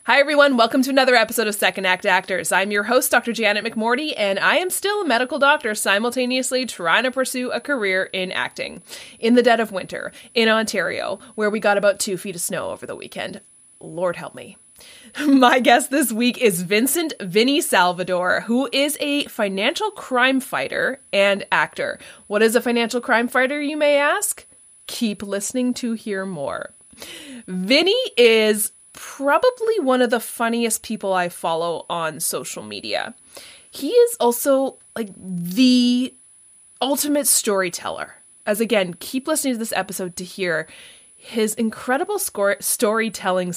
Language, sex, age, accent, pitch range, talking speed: English, female, 20-39, American, 205-275 Hz, 155 wpm